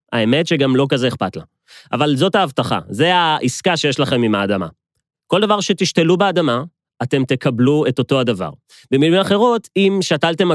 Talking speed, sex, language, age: 160 wpm, male, Hebrew, 30-49